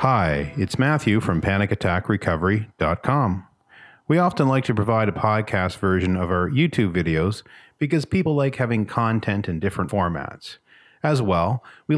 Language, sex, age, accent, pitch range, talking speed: English, male, 40-59, American, 95-125 Hz, 140 wpm